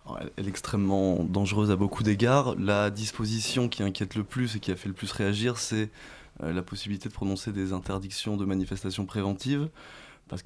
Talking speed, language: 180 wpm, French